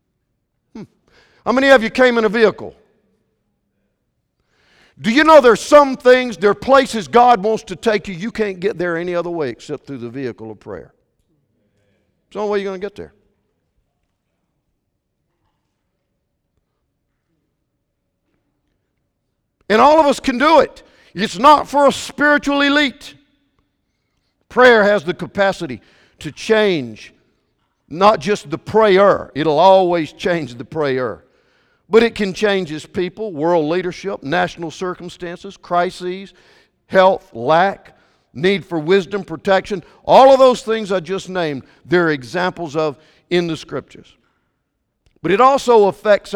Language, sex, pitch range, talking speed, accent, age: English, male, 160-220 Hz, 135 wpm, American, 50-69